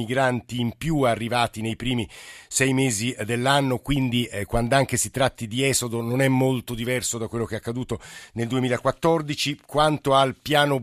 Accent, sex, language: native, male, Italian